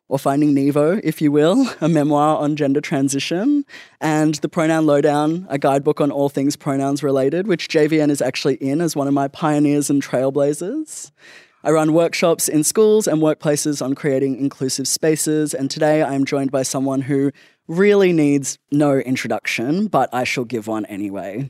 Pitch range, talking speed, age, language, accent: 135-165 Hz, 175 wpm, 20-39, English, Australian